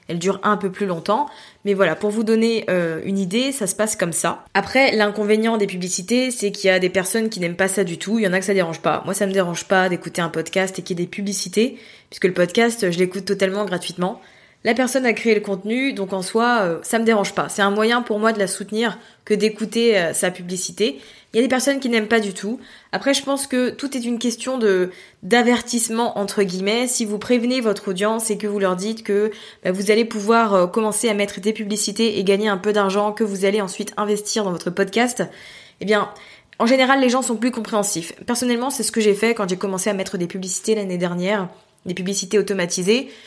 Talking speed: 235 wpm